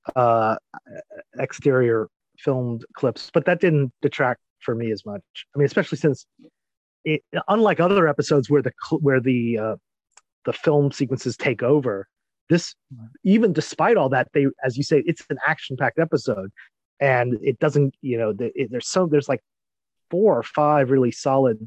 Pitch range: 125-160 Hz